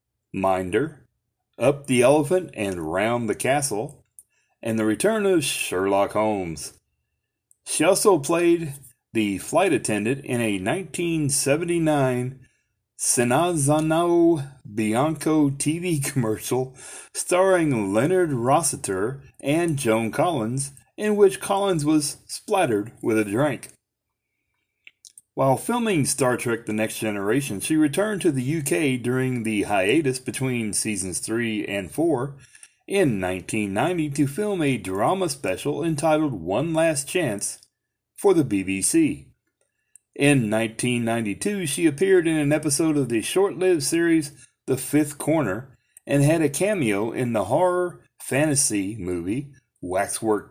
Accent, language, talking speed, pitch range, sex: American, English, 120 wpm, 110-160 Hz, male